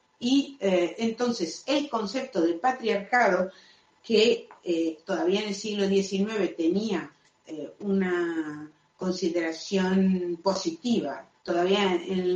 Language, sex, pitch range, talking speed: Spanish, female, 175-230 Hz, 100 wpm